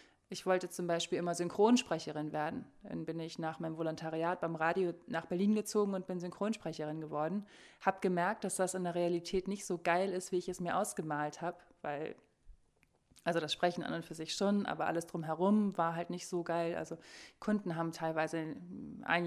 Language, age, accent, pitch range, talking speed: German, 20-39, German, 165-195 Hz, 190 wpm